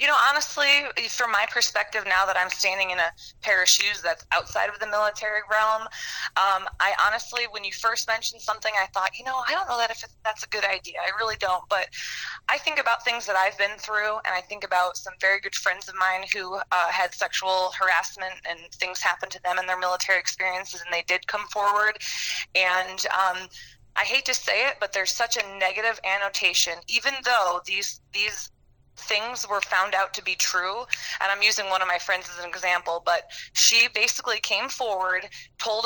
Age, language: 20-39, English